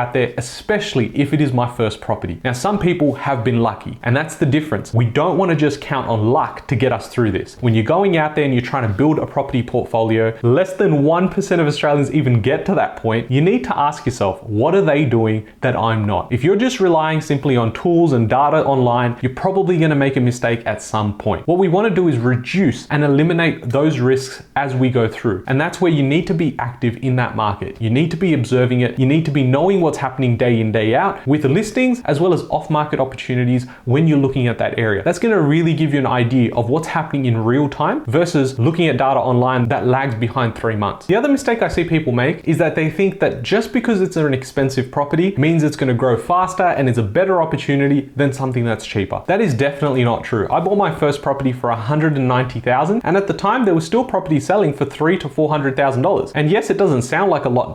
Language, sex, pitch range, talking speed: English, male, 125-160 Hz, 245 wpm